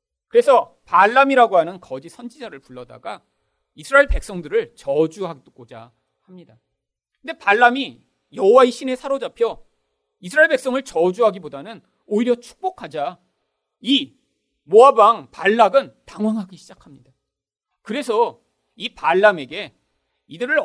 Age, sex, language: 40-59, male, Korean